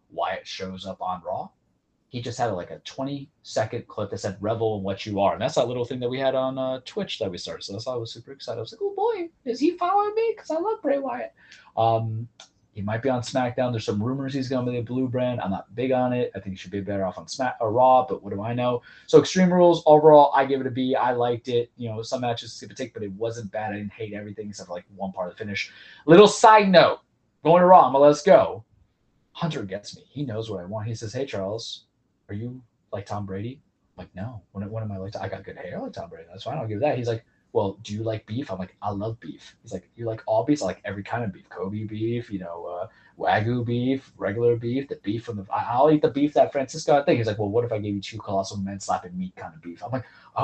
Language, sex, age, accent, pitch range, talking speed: English, male, 20-39, American, 105-140 Hz, 280 wpm